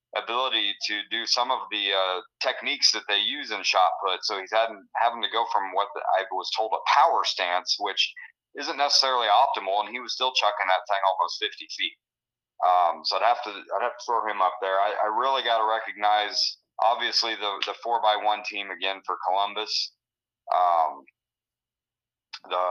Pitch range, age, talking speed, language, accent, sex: 105-120 Hz, 30-49, 195 wpm, English, American, male